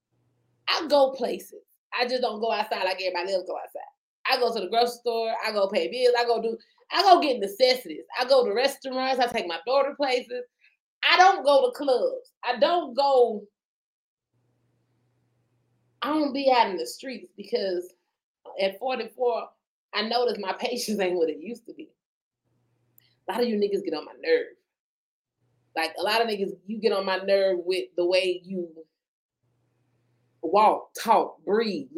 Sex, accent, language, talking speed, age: female, American, English, 175 wpm, 30-49